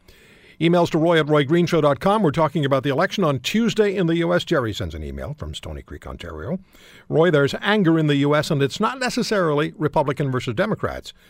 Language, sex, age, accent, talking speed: English, male, 60-79, American, 190 wpm